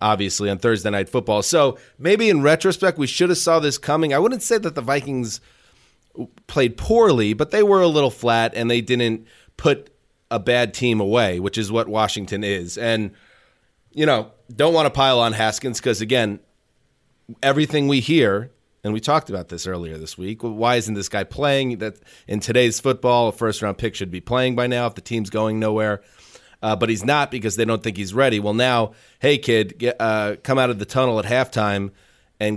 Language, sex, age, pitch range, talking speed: English, male, 30-49, 105-125 Hz, 205 wpm